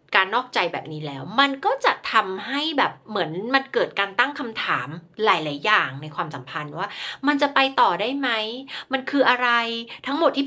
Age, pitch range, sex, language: 30-49, 165-260 Hz, female, Thai